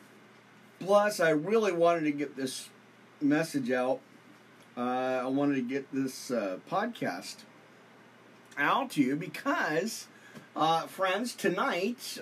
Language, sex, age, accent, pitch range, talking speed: English, male, 40-59, American, 135-220 Hz, 120 wpm